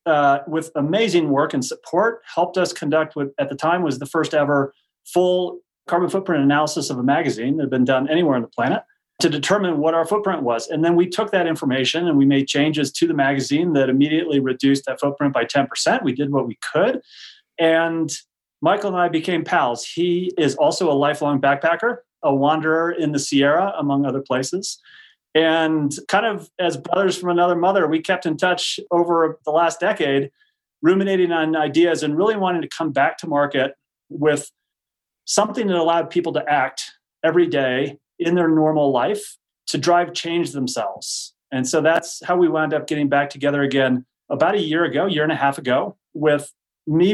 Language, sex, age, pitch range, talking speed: English, male, 30-49, 140-175 Hz, 190 wpm